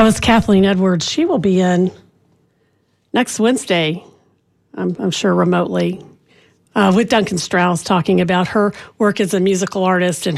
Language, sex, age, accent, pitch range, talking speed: English, female, 40-59, American, 185-220 Hz, 160 wpm